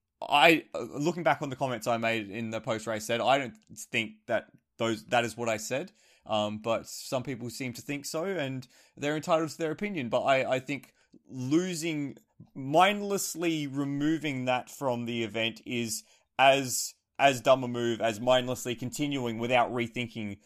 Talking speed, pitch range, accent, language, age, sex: 175 wpm, 115-145 Hz, Australian, English, 20-39, male